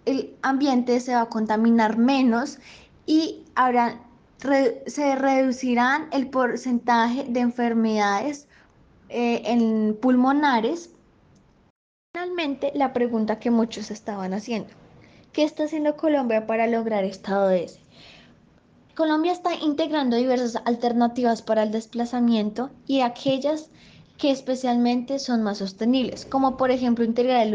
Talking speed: 110 wpm